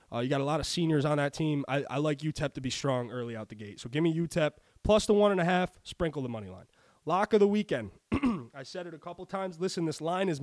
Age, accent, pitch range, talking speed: 20-39, American, 140-190 Hz, 280 wpm